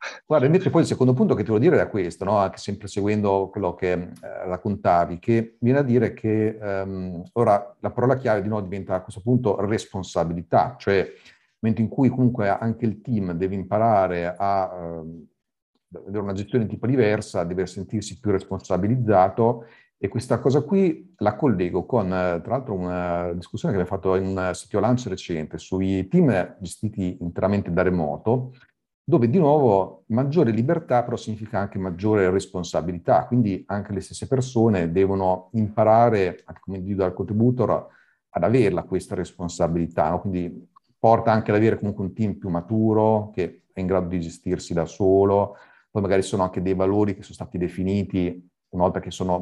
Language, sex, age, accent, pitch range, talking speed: Italian, male, 50-69, native, 90-110 Hz, 175 wpm